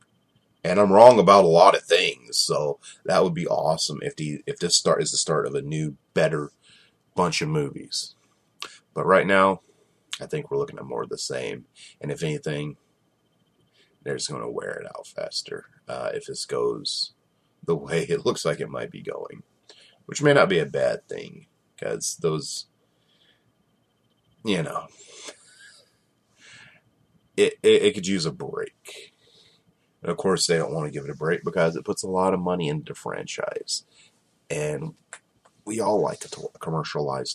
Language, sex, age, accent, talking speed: English, male, 30-49, American, 175 wpm